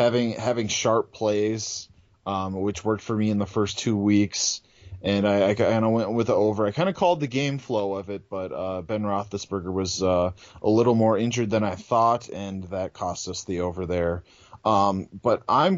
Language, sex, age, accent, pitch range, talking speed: English, male, 30-49, American, 95-120 Hz, 210 wpm